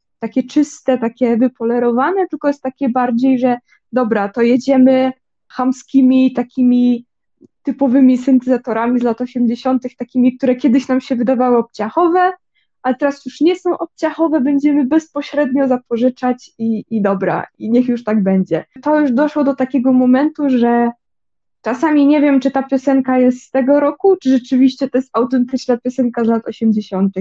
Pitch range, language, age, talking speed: 230-280 Hz, Polish, 20-39, 150 wpm